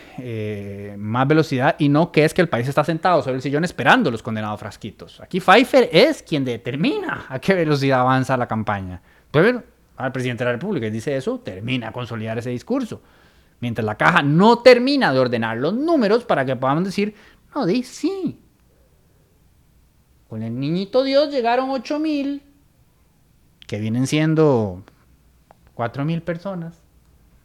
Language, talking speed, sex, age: Spanish, 155 wpm, male, 30-49